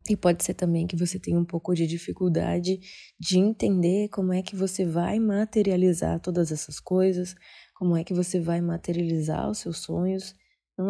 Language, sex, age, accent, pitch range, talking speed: Portuguese, female, 20-39, Brazilian, 170-200 Hz, 175 wpm